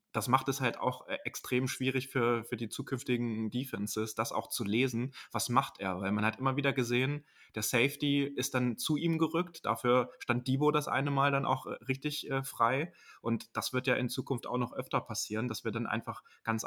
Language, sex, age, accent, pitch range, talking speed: German, male, 20-39, German, 110-125 Hz, 210 wpm